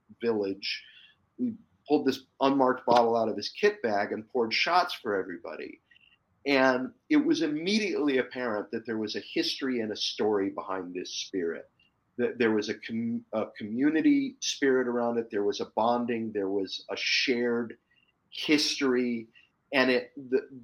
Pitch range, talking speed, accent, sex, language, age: 110-165 Hz, 155 wpm, American, male, English, 40-59